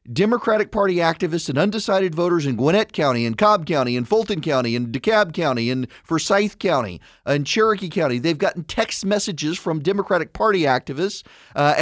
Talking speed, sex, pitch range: 170 wpm, male, 130-205 Hz